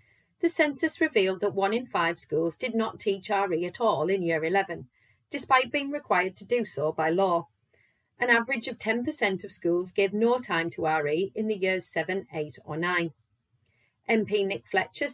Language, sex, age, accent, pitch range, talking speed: English, female, 40-59, British, 165-230 Hz, 180 wpm